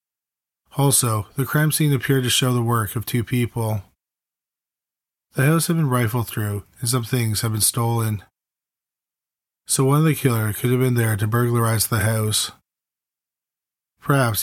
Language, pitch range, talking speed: English, 110-130 Hz, 160 wpm